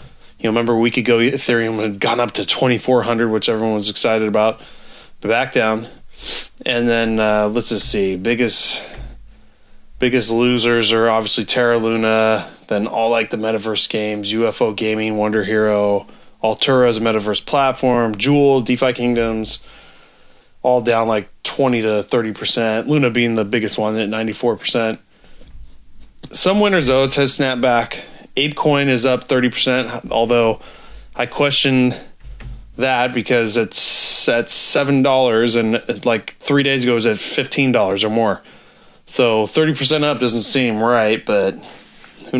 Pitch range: 110-125 Hz